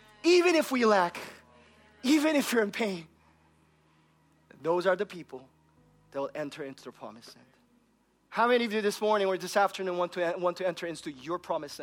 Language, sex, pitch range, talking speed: English, male, 190-280 Hz, 190 wpm